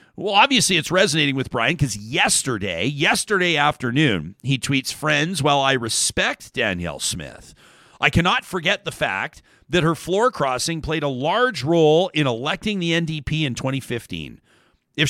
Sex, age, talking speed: male, 40-59, 150 wpm